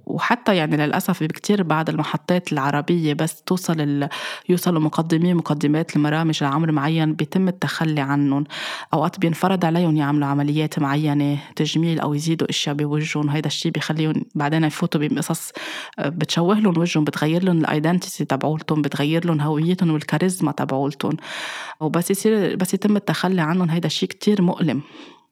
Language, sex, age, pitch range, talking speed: Arabic, female, 20-39, 155-175 Hz, 130 wpm